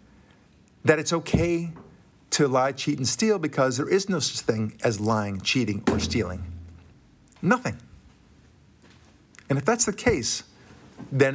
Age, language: 50-69, English